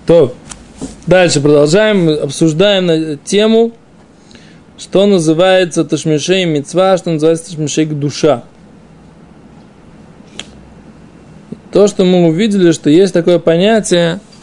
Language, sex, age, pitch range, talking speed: Russian, male, 20-39, 165-210 Hz, 85 wpm